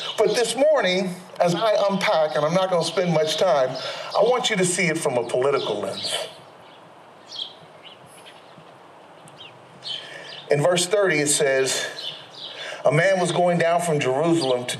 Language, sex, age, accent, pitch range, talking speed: English, male, 40-59, American, 170-255 Hz, 150 wpm